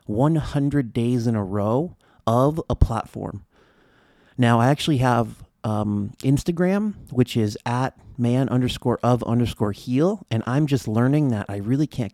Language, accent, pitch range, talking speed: English, American, 110-130 Hz, 150 wpm